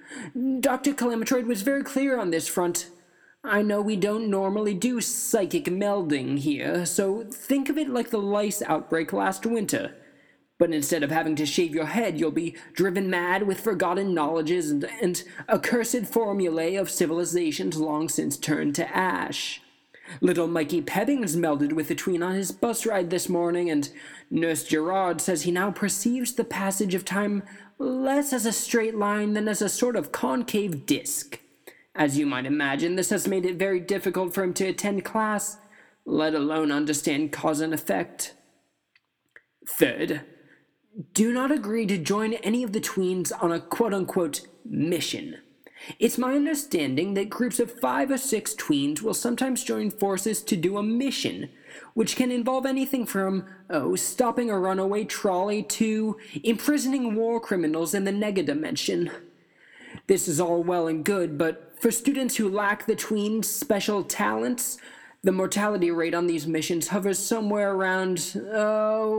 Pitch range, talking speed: 175-230 Hz, 160 wpm